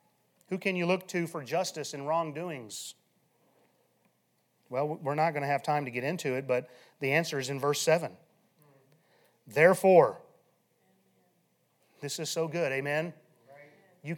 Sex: male